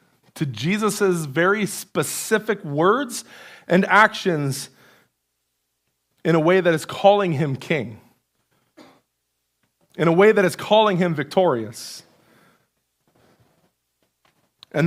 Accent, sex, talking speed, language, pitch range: American, male, 95 wpm, English, 125-180 Hz